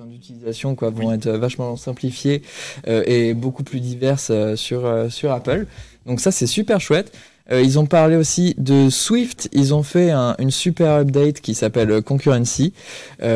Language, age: French, 20-39